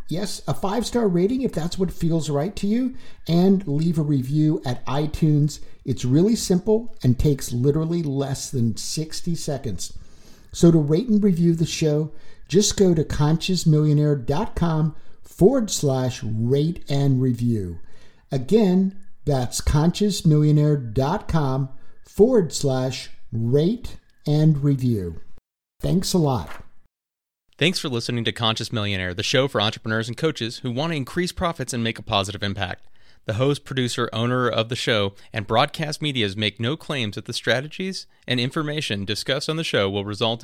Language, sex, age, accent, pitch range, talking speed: English, male, 50-69, American, 110-155 Hz, 150 wpm